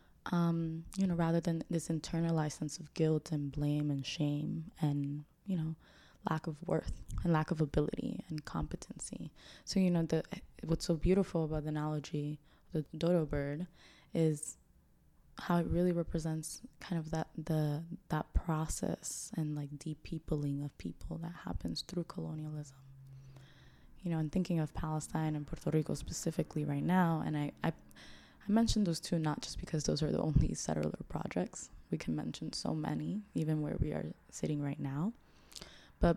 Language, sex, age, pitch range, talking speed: English, female, 10-29, 145-170 Hz, 170 wpm